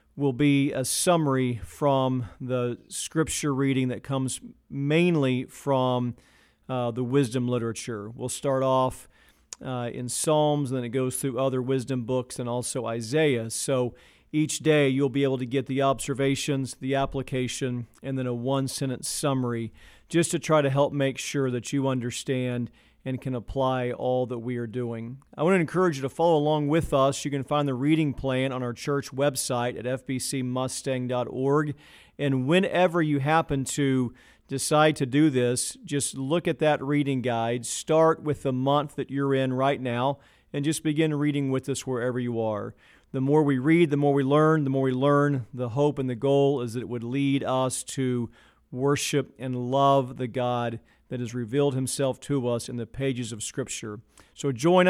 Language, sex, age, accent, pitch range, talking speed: English, male, 40-59, American, 125-145 Hz, 180 wpm